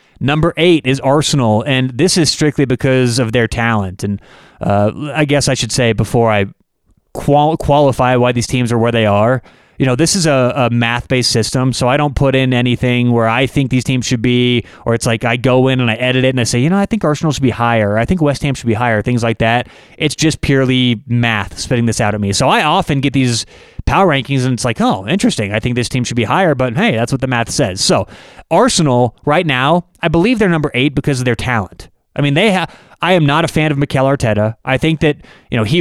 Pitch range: 120-150 Hz